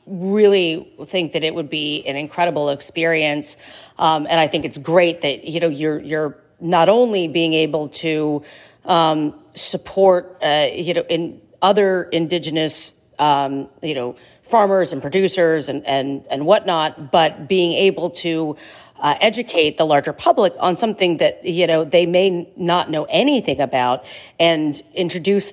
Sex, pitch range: female, 145-170 Hz